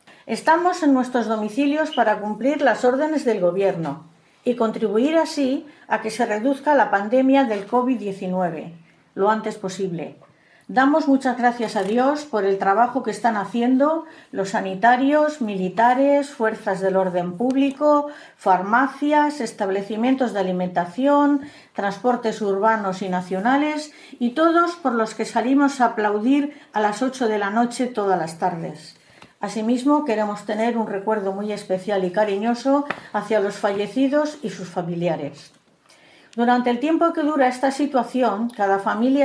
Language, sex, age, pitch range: Spanish, female, 50-69, 205-275 Hz